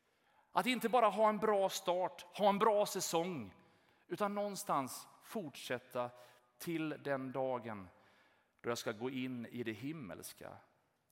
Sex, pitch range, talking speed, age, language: male, 155-230 Hz, 135 wpm, 30-49, Swedish